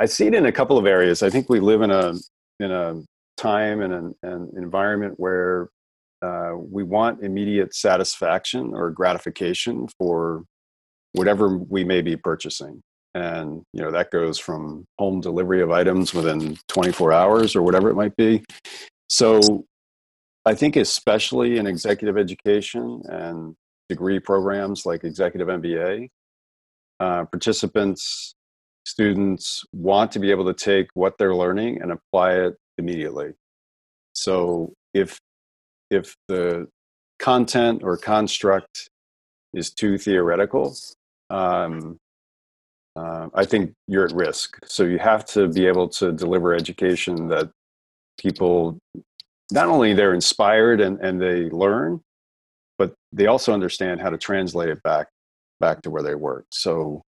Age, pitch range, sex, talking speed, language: 40-59, 80-100 Hz, male, 140 wpm, English